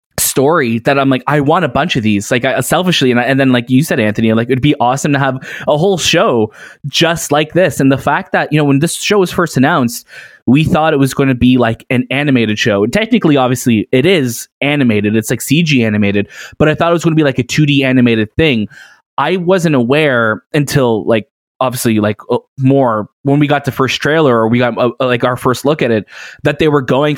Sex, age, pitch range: male, 20-39, 115-145 Hz